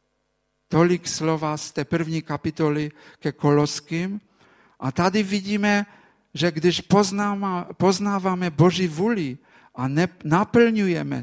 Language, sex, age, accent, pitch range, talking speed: Czech, male, 50-69, Polish, 150-185 Hz, 95 wpm